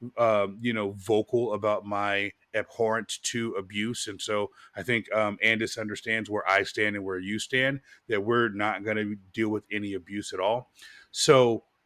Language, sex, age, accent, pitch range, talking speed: English, male, 30-49, American, 105-130 Hz, 175 wpm